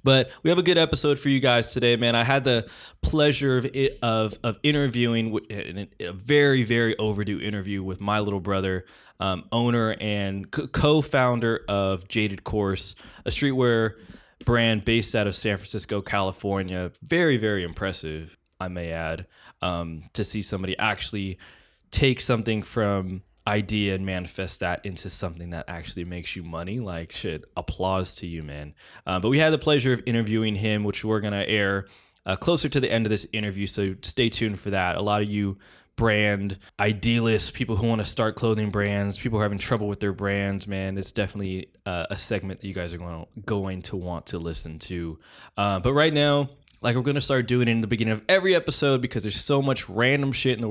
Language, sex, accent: English, male, American